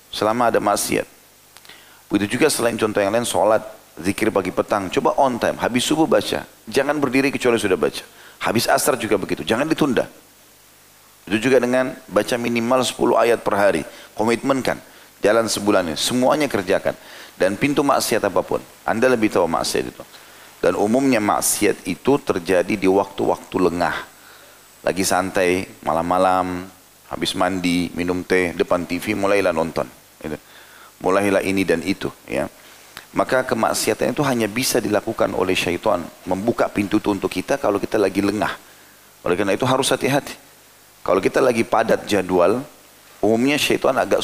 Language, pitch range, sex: Indonesian, 100-125 Hz, male